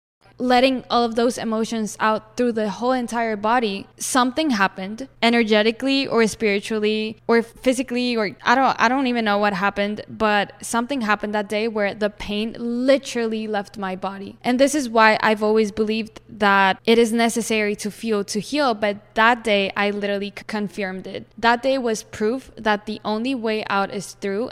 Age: 10-29